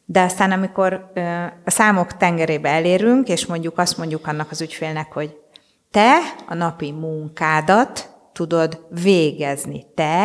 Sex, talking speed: female, 130 wpm